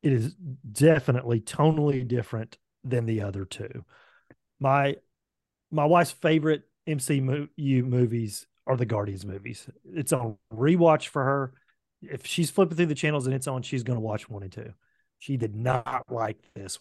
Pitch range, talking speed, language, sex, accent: 125-155 Hz, 160 wpm, English, male, American